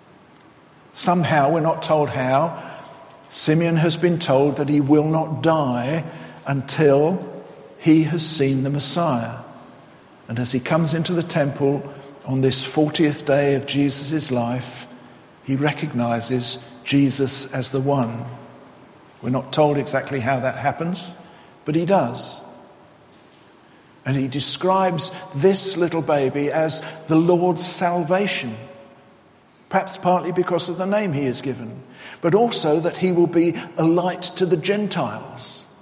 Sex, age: male, 50-69